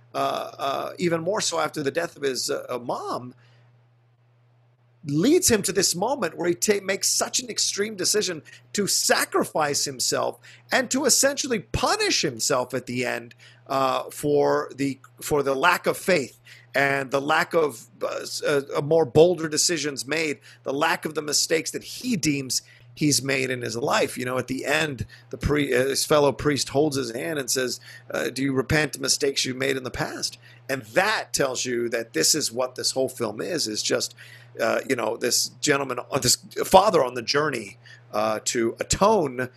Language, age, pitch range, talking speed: English, 50-69, 120-155 Hz, 180 wpm